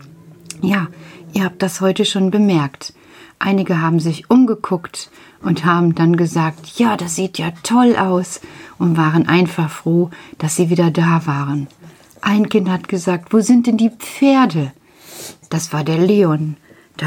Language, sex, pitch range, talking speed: German, female, 155-190 Hz, 155 wpm